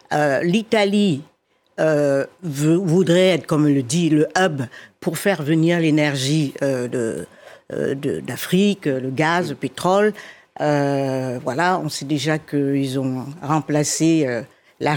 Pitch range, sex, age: 145-185 Hz, female, 60-79